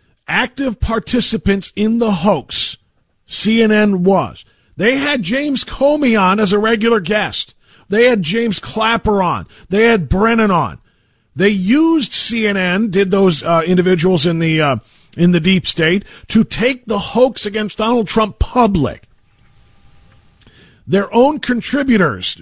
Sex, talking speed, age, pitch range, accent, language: male, 130 wpm, 50-69, 155-225 Hz, American, English